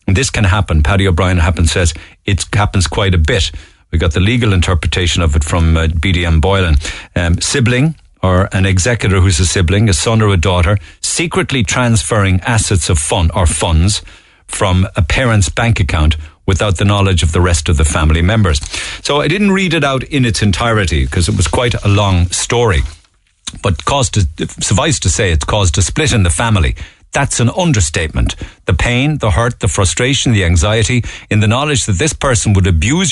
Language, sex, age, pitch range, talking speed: English, male, 50-69, 85-115 Hz, 195 wpm